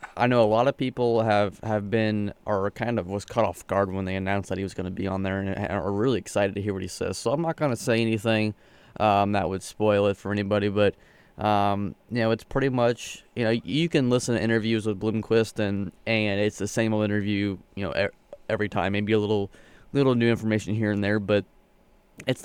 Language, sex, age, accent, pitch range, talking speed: English, male, 20-39, American, 100-115 Hz, 235 wpm